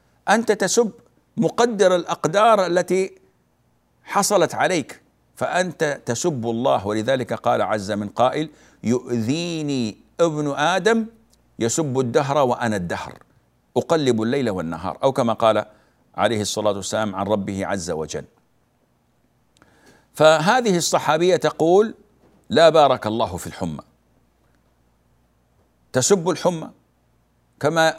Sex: male